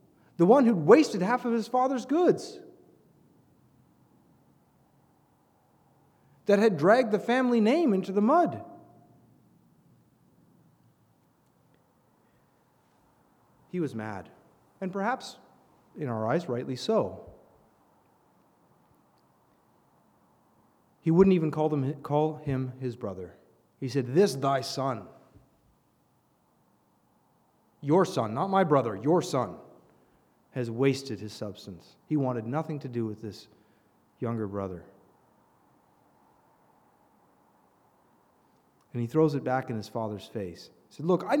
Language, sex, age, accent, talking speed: English, male, 30-49, American, 110 wpm